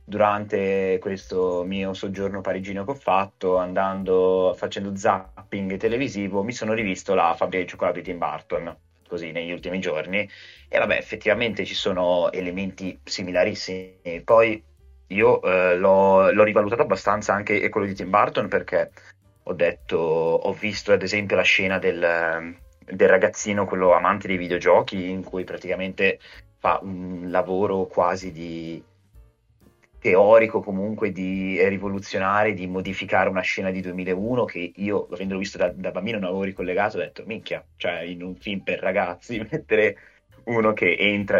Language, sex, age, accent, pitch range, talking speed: Italian, male, 30-49, native, 90-100 Hz, 150 wpm